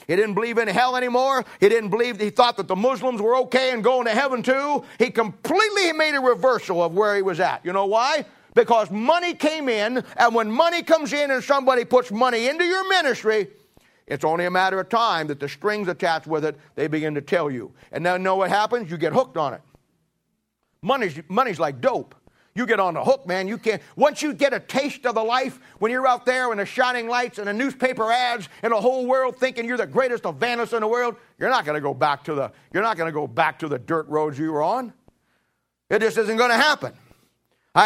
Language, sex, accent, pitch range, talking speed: English, male, American, 185-255 Hz, 235 wpm